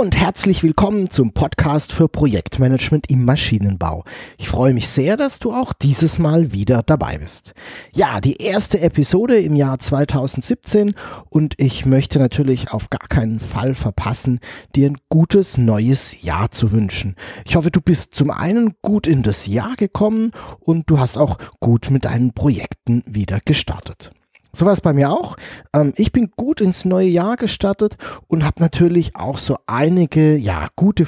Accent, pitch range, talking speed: German, 120-175 Hz, 165 wpm